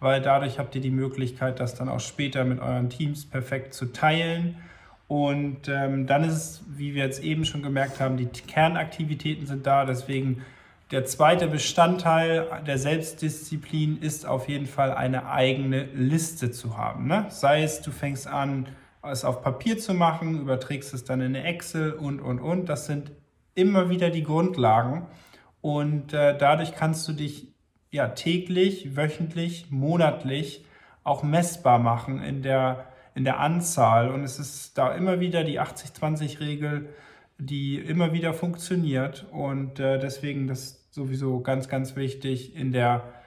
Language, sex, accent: German, male, German